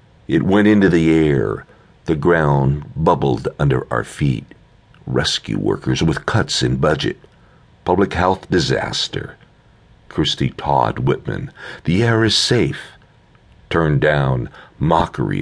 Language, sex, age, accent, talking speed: English, male, 60-79, American, 115 wpm